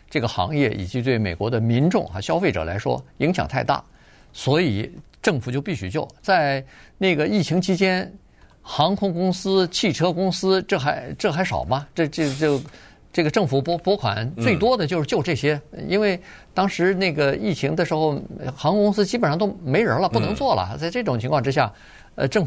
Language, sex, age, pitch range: Chinese, male, 50-69, 120-190 Hz